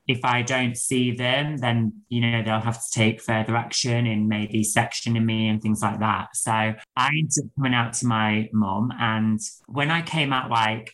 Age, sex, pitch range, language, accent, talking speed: 20-39, male, 110-130 Hz, English, British, 190 wpm